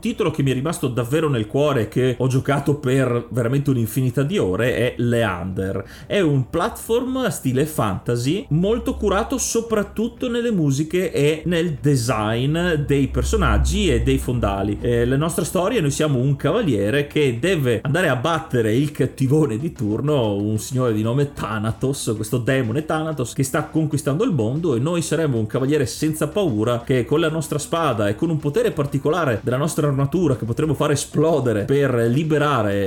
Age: 30-49